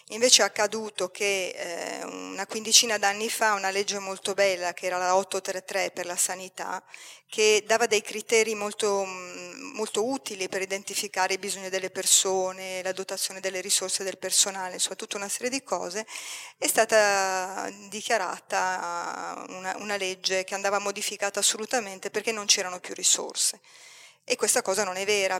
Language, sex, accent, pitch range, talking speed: Italian, female, native, 190-210 Hz, 155 wpm